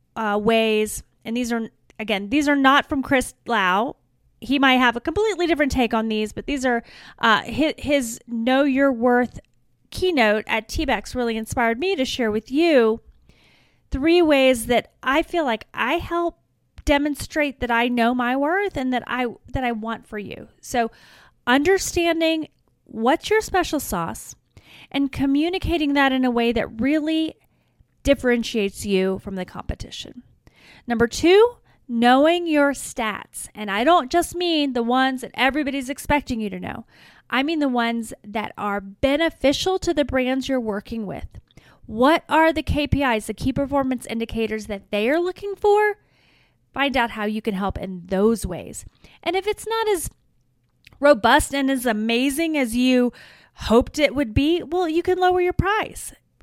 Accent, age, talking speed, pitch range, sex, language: American, 30-49, 165 wpm, 230-310 Hz, female, English